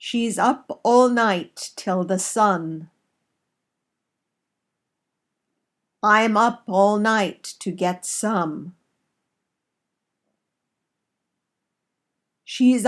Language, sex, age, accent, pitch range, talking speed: English, female, 50-69, American, 180-240 Hz, 70 wpm